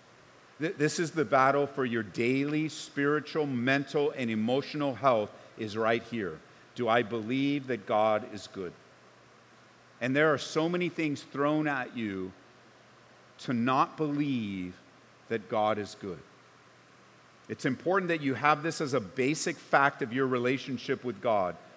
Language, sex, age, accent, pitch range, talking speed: English, male, 50-69, American, 135-175 Hz, 145 wpm